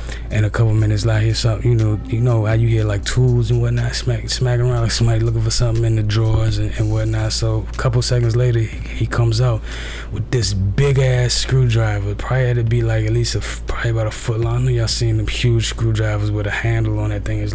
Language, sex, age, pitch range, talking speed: English, male, 20-39, 105-115 Hz, 235 wpm